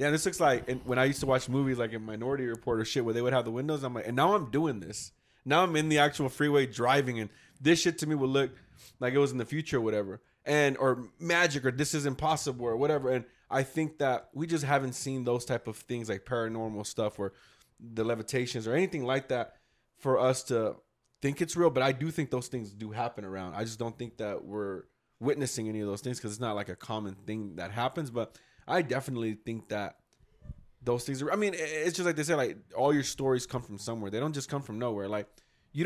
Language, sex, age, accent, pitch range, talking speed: English, male, 20-39, American, 115-145 Hz, 250 wpm